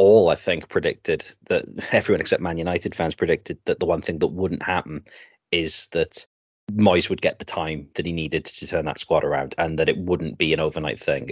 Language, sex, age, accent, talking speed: English, male, 30-49, British, 215 wpm